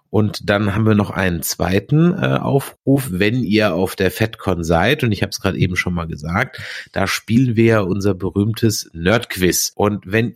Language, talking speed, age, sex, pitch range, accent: German, 190 wpm, 30-49, male, 95-125 Hz, German